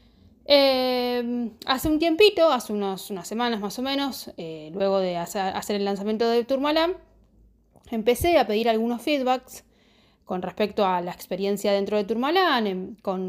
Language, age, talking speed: Spanish, 20-39, 155 wpm